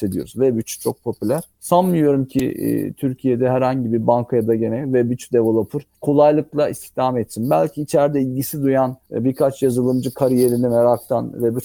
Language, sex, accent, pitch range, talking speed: Turkish, male, native, 115-145 Hz, 145 wpm